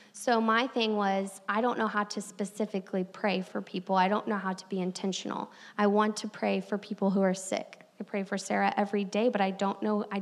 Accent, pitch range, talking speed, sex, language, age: American, 190-220 Hz, 235 wpm, female, English, 20-39